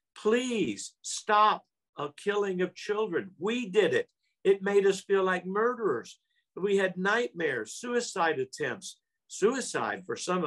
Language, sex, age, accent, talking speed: English, male, 50-69, American, 130 wpm